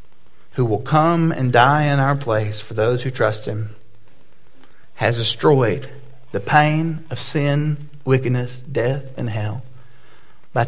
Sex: male